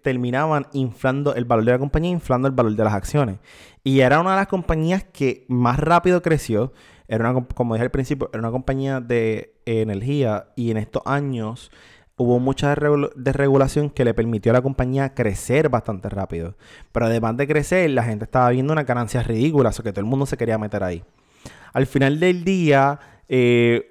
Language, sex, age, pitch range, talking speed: Spanish, male, 20-39, 115-140 Hz, 190 wpm